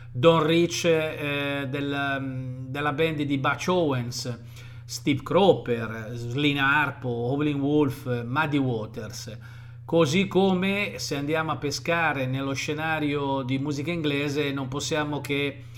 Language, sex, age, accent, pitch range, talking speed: Italian, male, 40-59, native, 125-150 Hz, 120 wpm